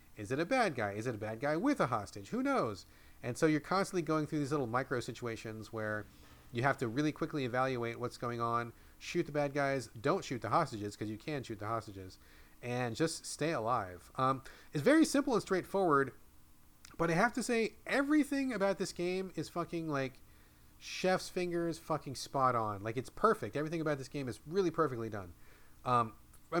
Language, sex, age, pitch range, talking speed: English, male, 40-59, 115-165 Hz, 200 wpm